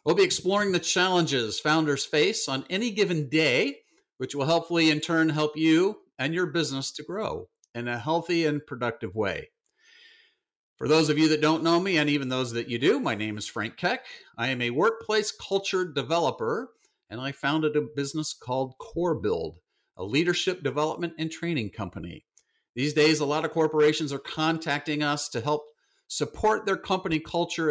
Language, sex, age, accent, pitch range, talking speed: English, male, 50-69, American, 130-175 Hz, 180 wpm